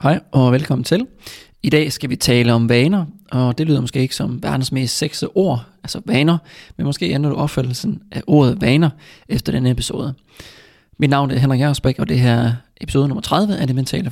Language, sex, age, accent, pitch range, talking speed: Danish, male, 20-39, native, 130-160 Hz, 210 wpm